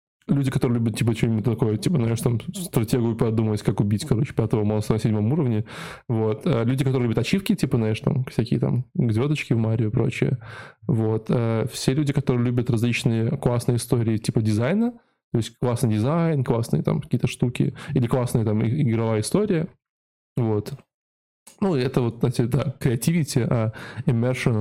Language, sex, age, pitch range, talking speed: Russian, male, 20-39, 115-140 Hz, 165 wpm